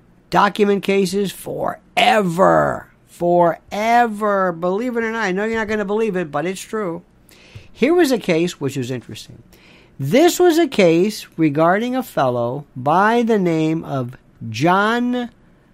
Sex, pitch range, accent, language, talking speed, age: male, 170-220 Hz, American, English, 145 wpm, 50-69